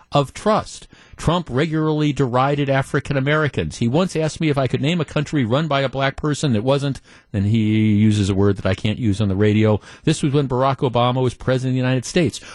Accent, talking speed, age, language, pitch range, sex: American, 225 wpm, 50-69, English, 125-170 Hz, male